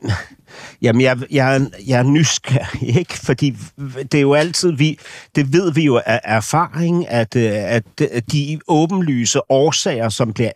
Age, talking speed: 60-79, 140 wpm